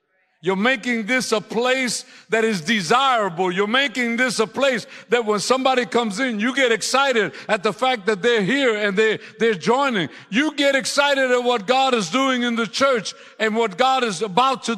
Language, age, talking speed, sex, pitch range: English, 60-79, 190 wpm, male, 165-245 Hz